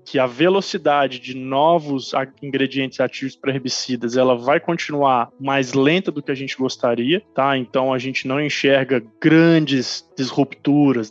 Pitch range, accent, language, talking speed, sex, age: 130-165 Hz, Brazilian, Portuguese, 145 wpm, male, 20-39